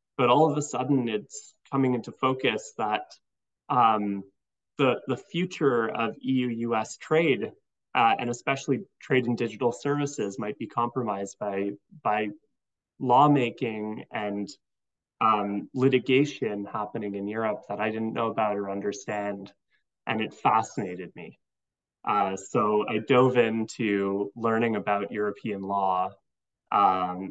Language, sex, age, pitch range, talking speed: English, male, 20-39, 100-125 Hz, 125 wpm